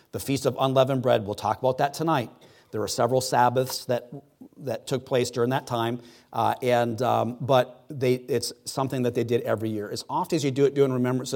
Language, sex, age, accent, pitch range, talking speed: English, male, 40-59, American, 115-130 Hz, 215 wpm